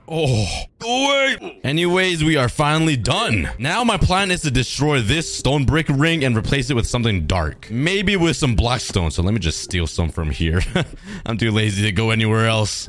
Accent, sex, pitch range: American, male, 105-145 Hz